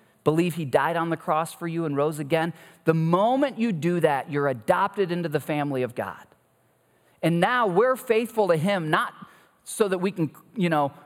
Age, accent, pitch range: 40-59, American, 150-205 Hz